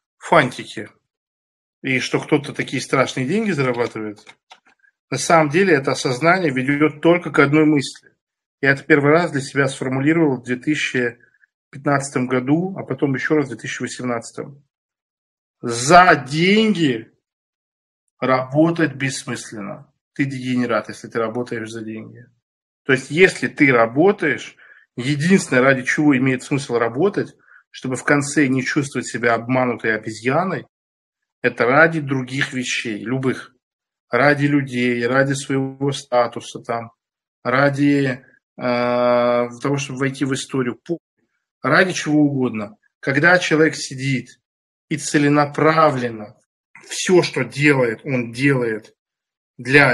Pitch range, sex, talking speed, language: 125-155 Hz, male, 115 wpm, Russian